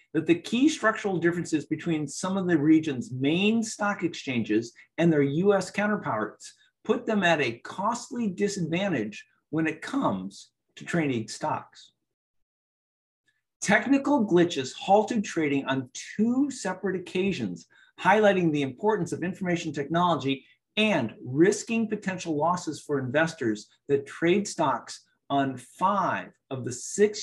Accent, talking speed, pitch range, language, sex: American, 125 wpm, 145-205 Hz, English, male